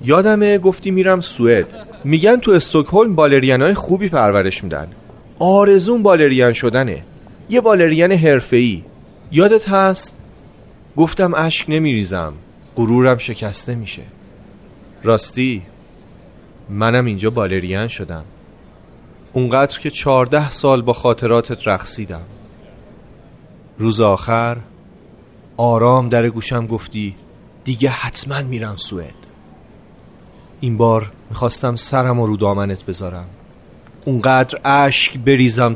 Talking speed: 95 wpm